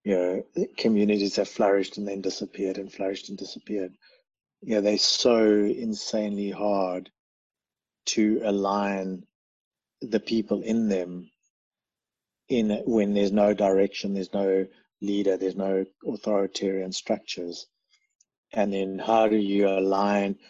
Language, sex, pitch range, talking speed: English, male, 95-105 Hz, 125 wpm